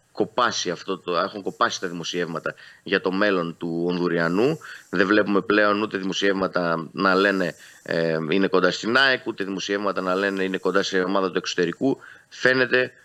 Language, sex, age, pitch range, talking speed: Greek, male, 30-49, 90-110 Hz, 165 wpm